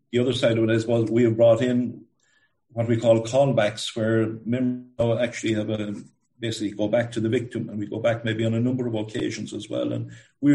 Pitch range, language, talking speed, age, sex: 110-120 Hz, English, 240 wpm, 50-69, male